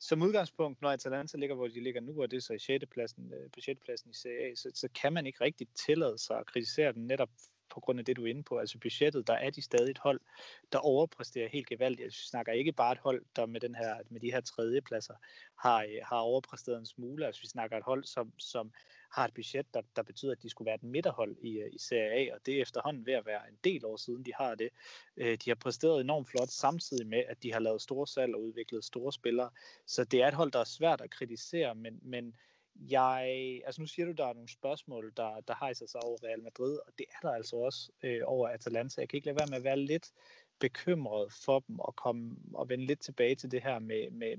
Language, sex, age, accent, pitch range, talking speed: Danish, male, 30-49, native, 120-145 Hz, 245 wpm